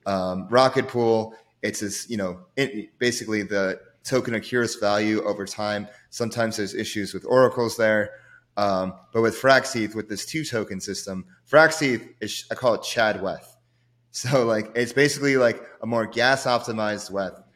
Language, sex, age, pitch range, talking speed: English, male, 30-49, 100-120 Hz, 155 wpm